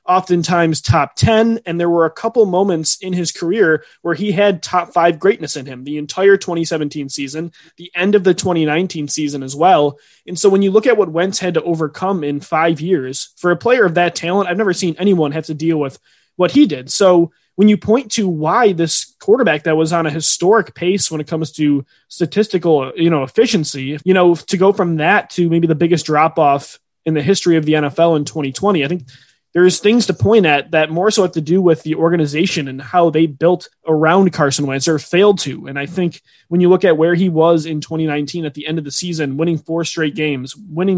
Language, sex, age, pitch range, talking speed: English, male, 20-39, 155-185 Hz, 225 wpm